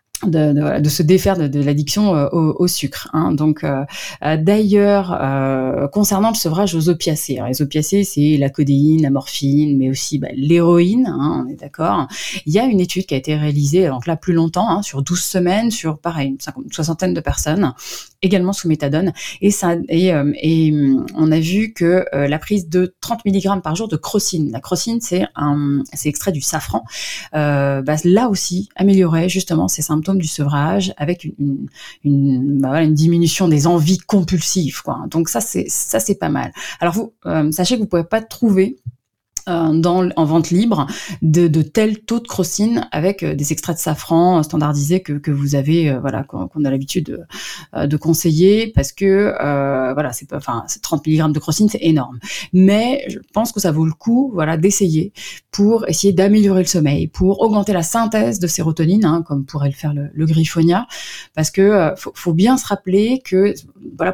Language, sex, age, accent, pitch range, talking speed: French, female, 30-49, French, 150-195 Hz, 190 wpm